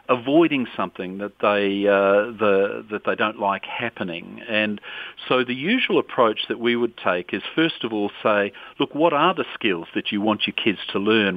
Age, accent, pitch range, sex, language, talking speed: 40-59, Australian, 100-130 Hz, male, English, 195 wpm